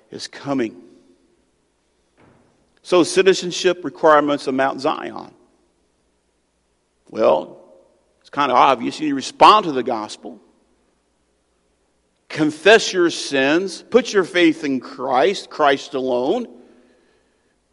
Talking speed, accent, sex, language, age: 100 wpm, American, male, English, 50-69